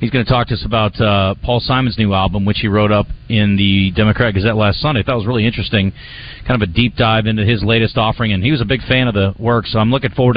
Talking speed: 290 wpm